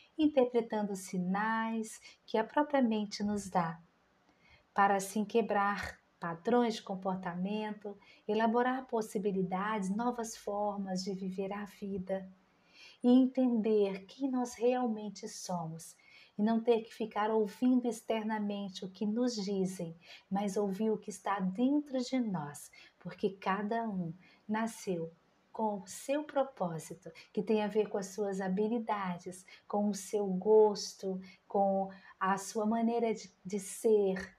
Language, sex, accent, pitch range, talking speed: Portuguese, female, Brazilian, 190-225 Hz, 125 wpm